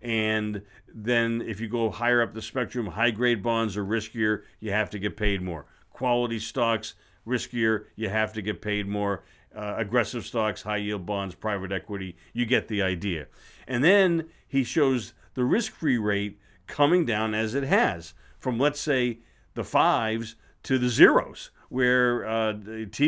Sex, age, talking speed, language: male, 50-69, 160 wpm, English